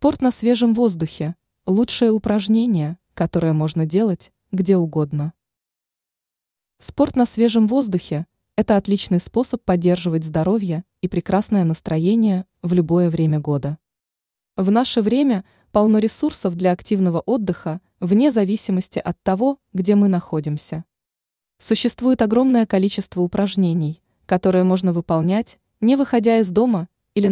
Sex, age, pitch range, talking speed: female, 20-39, 170-220 Hz, 120 wpm